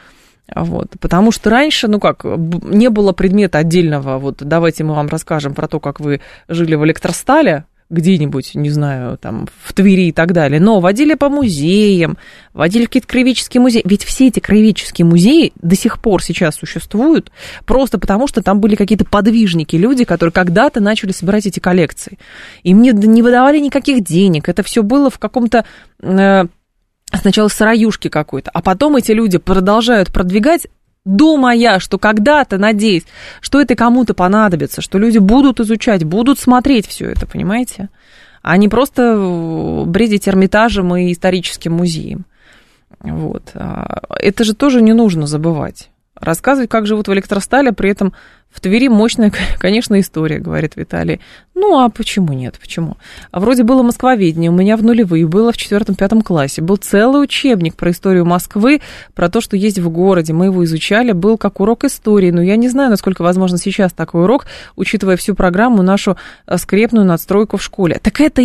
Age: 20-39